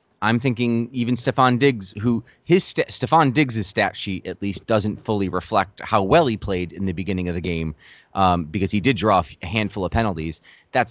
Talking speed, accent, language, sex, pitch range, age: 200 wpm, American, English, male, 90-120 Hz, 30-49